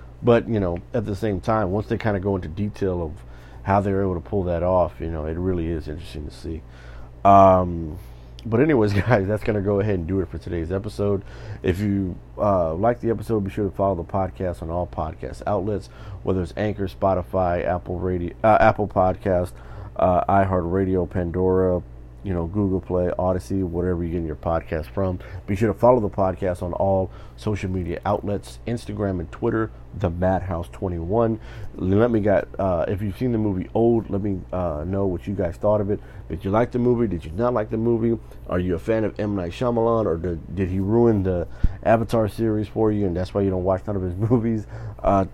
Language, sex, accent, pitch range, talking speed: English, male, American, 90-105 Hz, 215 wpm